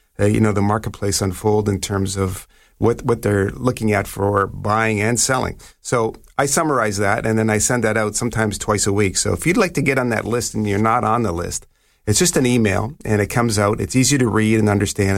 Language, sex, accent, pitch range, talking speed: English, male, American, 95-115 Hz, 240 wpm